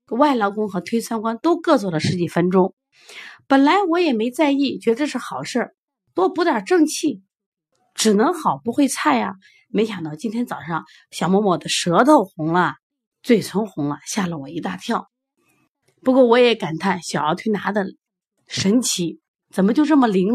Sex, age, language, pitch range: female, 30-49, Chinese, 185-295 Hz